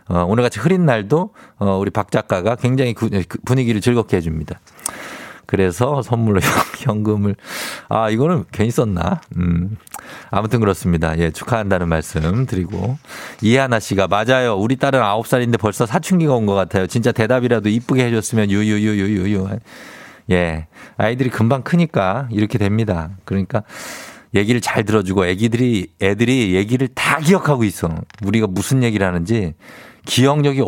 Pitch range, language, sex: 100-135 Hz, Korean, male